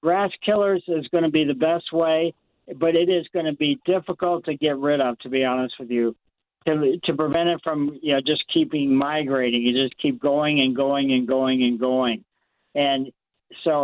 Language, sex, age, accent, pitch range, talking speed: English, male, 50-69, American, 135-160 Hz, 205 wpm